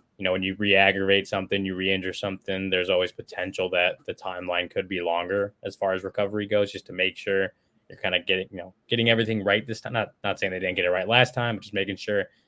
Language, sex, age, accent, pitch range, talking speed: English, male, 20-39, American, 95-115 Hz, 250 wpm